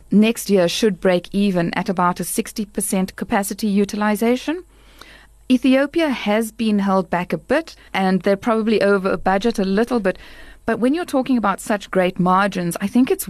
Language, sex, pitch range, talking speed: English, female, 185-235 Hz, 170 wpm